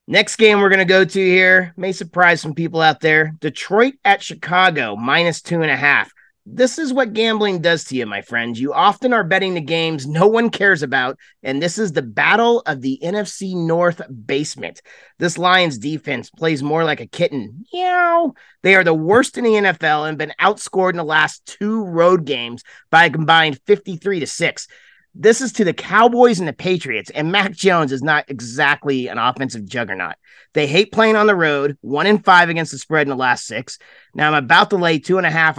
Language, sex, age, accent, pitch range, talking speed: English, male, 30-49, American, 140-200 Hz, 200 wpm